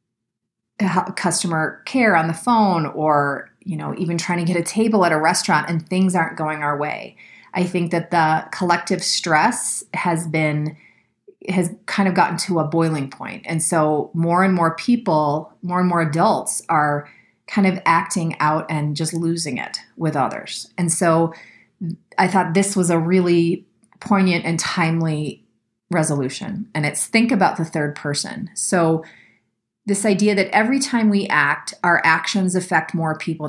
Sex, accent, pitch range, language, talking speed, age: female, American, 155-190 Hz, English, 165 wpm, 30-49